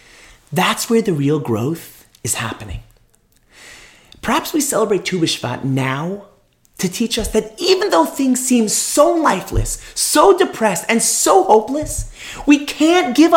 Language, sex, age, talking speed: English, male, 30-49, 135 wpm